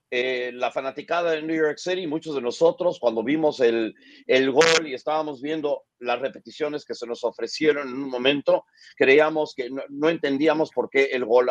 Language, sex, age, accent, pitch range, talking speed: Spanish, male, 50-69, Mexican, 130-160 Hz, 190 wpm